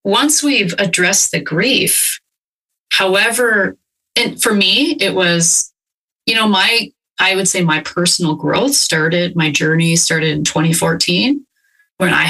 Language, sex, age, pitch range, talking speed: English, female, 30-49, 170-285 Hz, 135 wpm